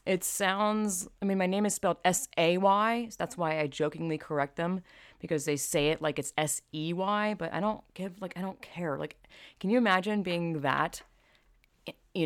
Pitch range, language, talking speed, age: 155-195 Hz, English, 180 wpm, 20-39